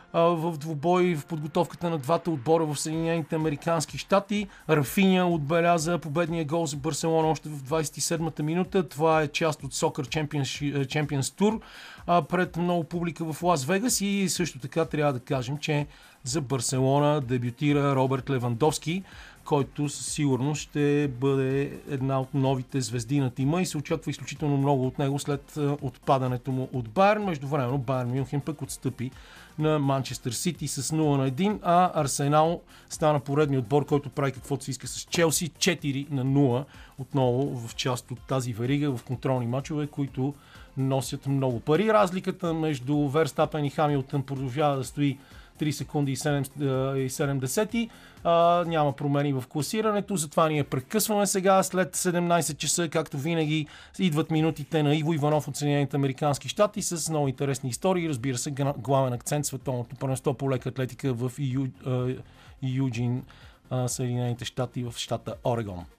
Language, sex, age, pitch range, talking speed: Bulgarian, male, 40-59, 135-165 Hz, 150 wpm